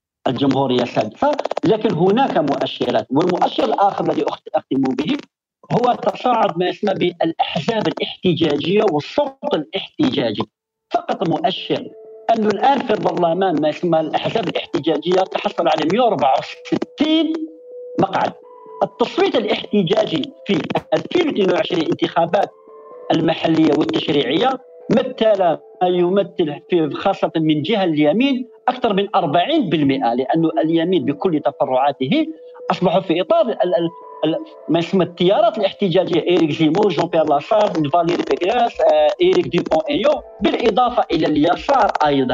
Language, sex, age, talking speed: Arabic, male, 50-69, 110 wpm